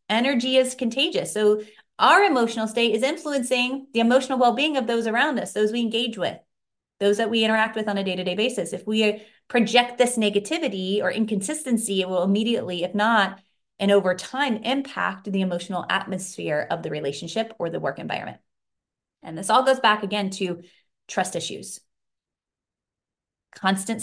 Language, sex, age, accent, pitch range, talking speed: English, female, 30-49, American, 175-225 Hz, 160 wpm